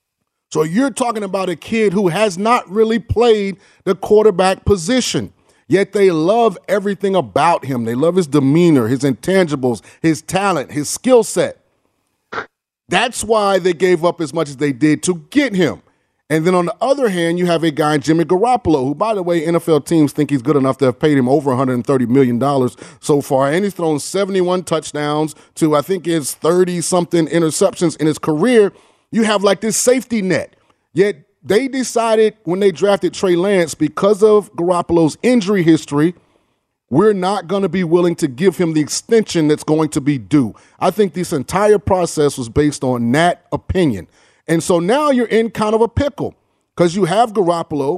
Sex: male